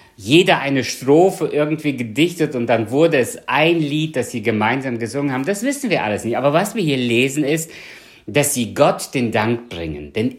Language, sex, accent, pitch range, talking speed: German, male, German, 110-150 Hz, 195 wpm